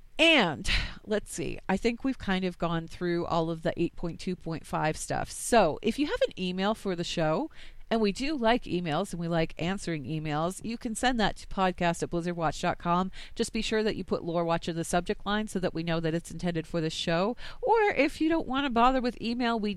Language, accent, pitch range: English, American, 165-215 Hz